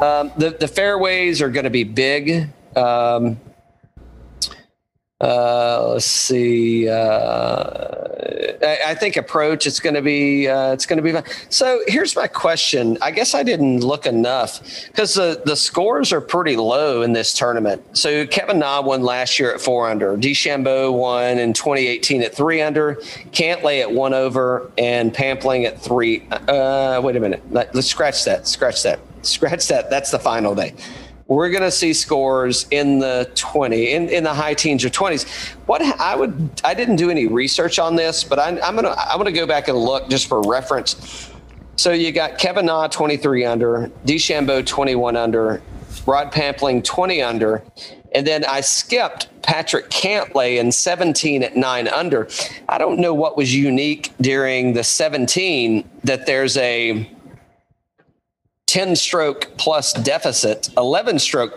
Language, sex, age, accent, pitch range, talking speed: English, male, 40-59, American, 120-155 Hz, 165 wpm